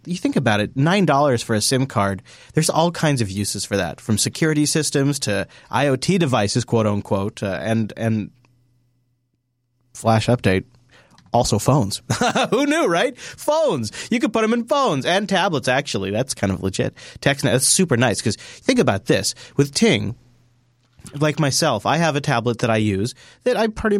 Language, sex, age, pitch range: English, male, 30-49, 110-155 Hz